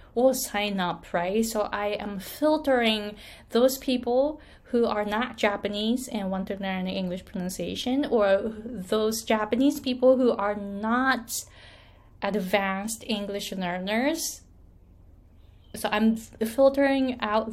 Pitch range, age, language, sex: 195-245 Hz, 20-39, Japanese, female